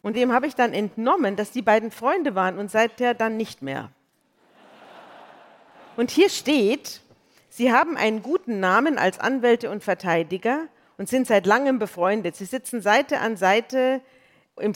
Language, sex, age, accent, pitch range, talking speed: German, female, 40-59, German, 185-235 Hz, 160 wpm